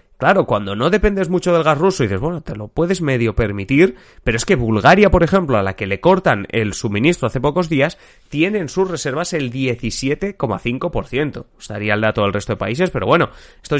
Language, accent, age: Spanish, Spanish, 30-49